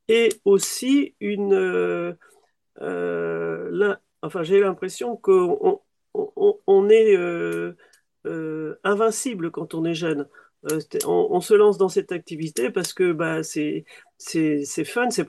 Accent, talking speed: French, 140 wpm